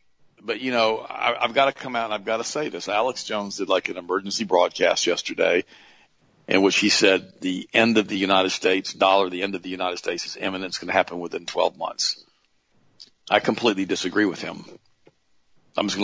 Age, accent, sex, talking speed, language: 50-69, American, male, 210 wpm, English